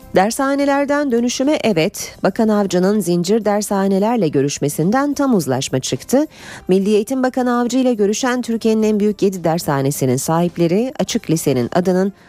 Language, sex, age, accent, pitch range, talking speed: Turkish, female, 40-59, native, 150-225 Hz, 125 wpm